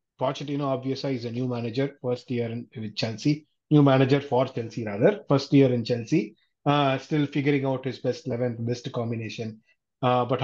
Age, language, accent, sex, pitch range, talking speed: 30-49, Tamil, native, male, 120-145 Hz, 180 wpm